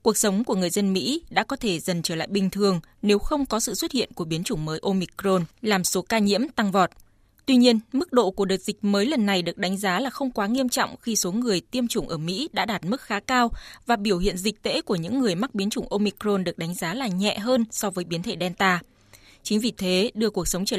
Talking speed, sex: 265 wpm, female